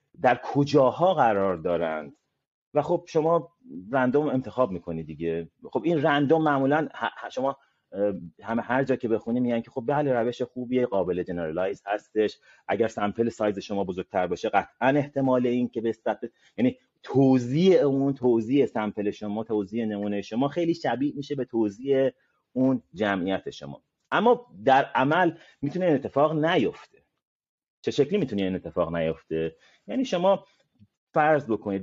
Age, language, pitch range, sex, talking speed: 30-49, Persian, 100-140 Hz, male, 145 wpm